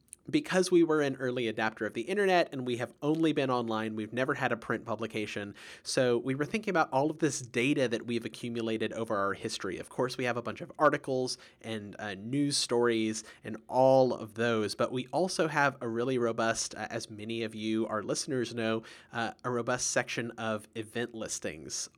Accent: American